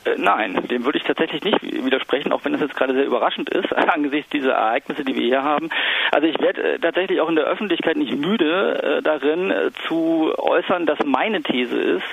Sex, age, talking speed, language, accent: male, 40-59, 200 wpm, German, German